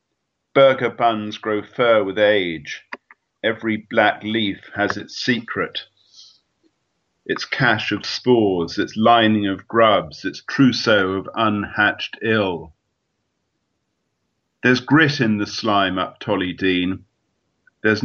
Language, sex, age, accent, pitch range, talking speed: English, male, 50-69, British, 95-110 Hz, 115 wpm